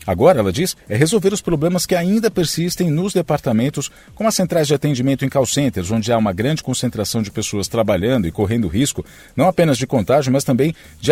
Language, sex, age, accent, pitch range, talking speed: Portuguese, male, 50-69, Brazilian, 105-145 Hz, 205 wpm